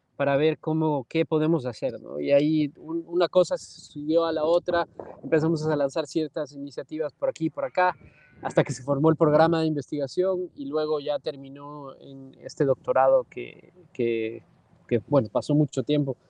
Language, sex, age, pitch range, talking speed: English, male, 20-39, 130-160 Hz, 170 wpm